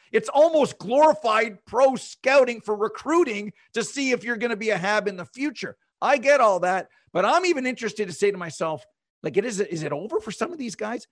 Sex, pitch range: male, 180-250 Hz